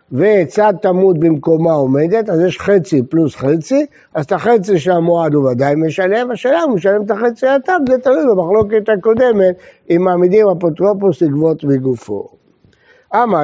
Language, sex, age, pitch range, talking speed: Hebrew, male, 60-79, 160-215 Hz, 155 wpm